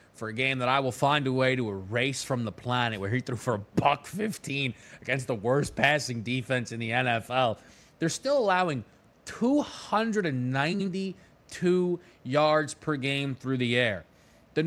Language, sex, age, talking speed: English, male, 30-49, 165 wpm